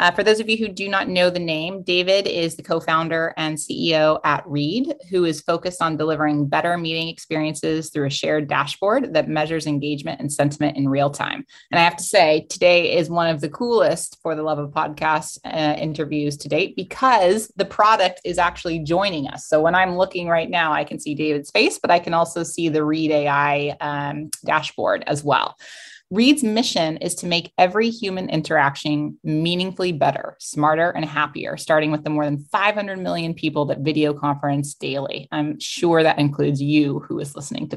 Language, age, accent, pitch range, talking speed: English, 20-39, American, 150-180 Hz, 195 wpm